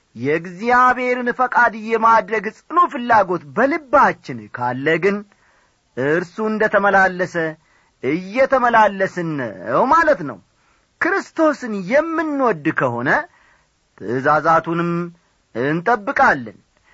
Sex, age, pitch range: male, 40-59, 155-230 Hz